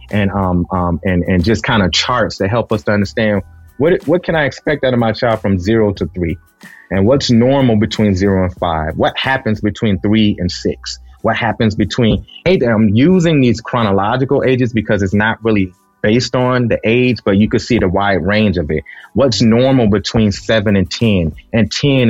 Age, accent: 30-49, American